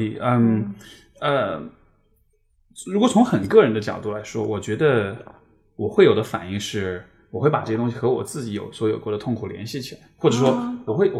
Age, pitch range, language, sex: 20-39, 110-140 Hz, Chinese, male